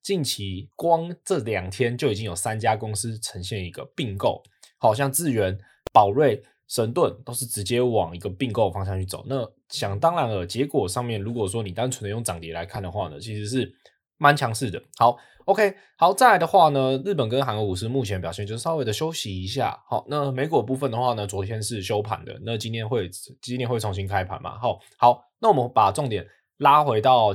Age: 20-39